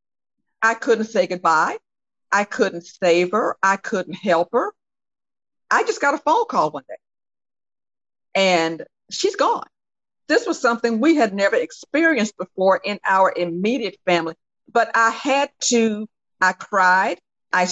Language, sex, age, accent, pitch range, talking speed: English, female, 50-69, American, 180-235 Hz, 140 wpm